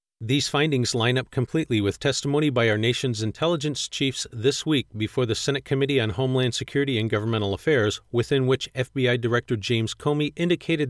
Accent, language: American, English